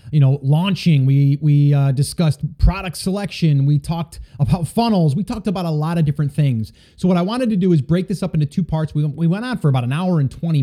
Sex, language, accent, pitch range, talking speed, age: male, English, American, 145-180 Hz, 250 wpm, 30-49